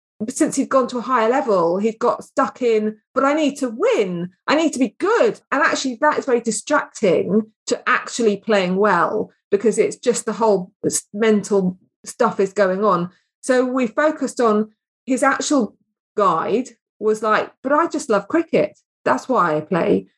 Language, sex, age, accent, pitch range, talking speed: English, female, 30-49, British, 205-265 Hz, 175 wpm